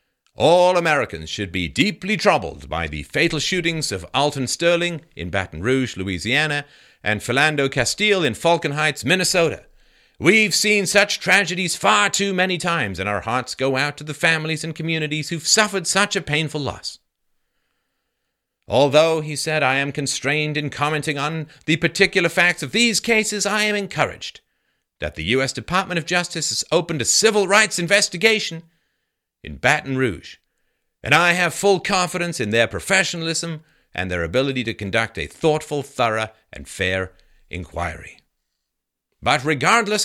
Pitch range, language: 130-180 Hz, English